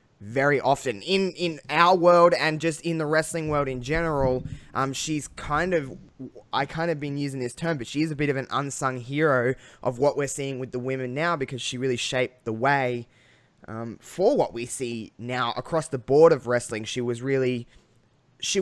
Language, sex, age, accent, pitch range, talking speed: English, male, 20-39, Australian, 125-155 Hz, 200 wpm